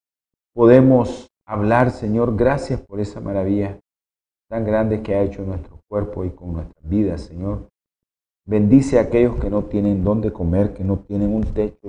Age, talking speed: 40-59, 160 wpm